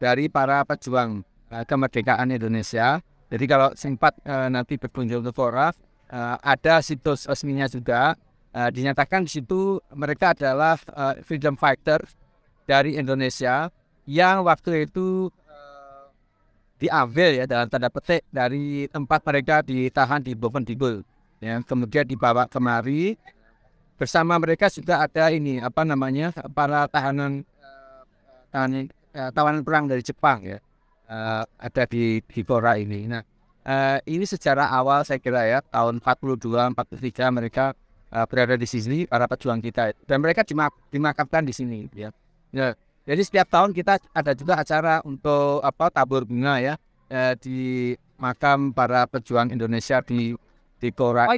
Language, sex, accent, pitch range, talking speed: English, male, Indonesian, 125-150 Hz, 130 wpm